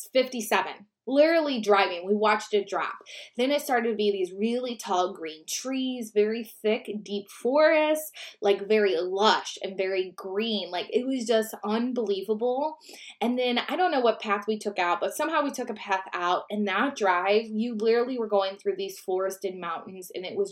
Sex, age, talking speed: female, 20-39, 185 wpm